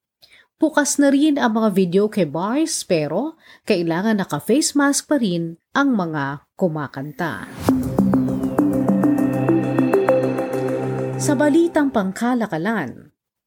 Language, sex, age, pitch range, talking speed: Filipino, female, 40-59, 165-240 Hz, 90 wpm